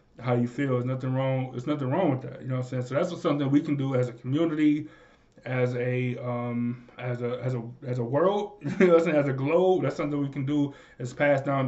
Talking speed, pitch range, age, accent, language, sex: 245 wpm, 125-155 Hz, 20-39, American, English, male